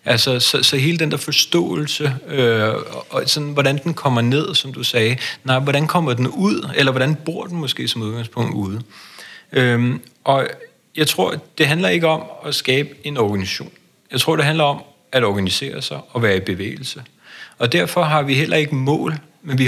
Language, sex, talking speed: Danish, male, 190 wpm